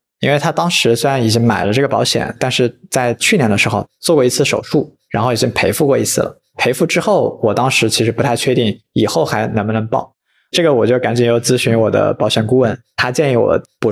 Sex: male